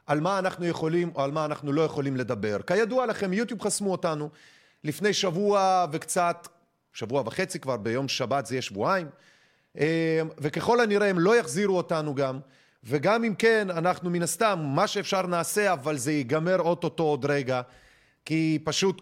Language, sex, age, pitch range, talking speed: Hebrew, male, 30-49, 155-210 Hz, 160 wpm